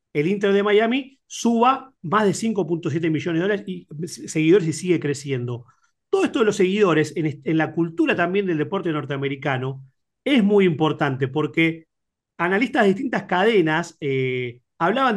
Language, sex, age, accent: Spanish, male, 40-59, Argentinian